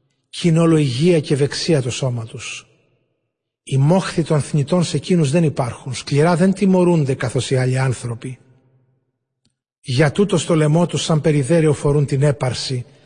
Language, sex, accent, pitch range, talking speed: Greek, male, native, 135-165 Hz, 150 wpm